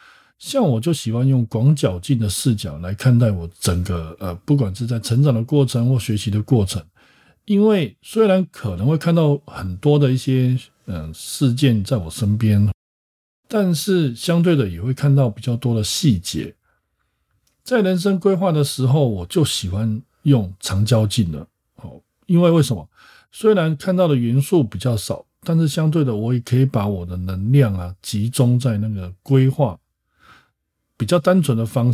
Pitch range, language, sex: 105-150 Hz, Chinese, male